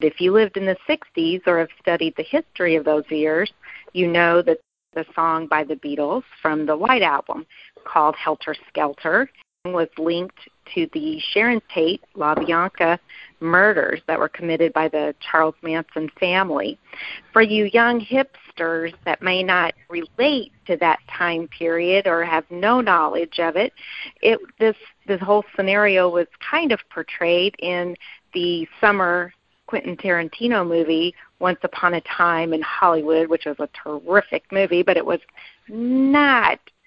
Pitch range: 165-210 Hz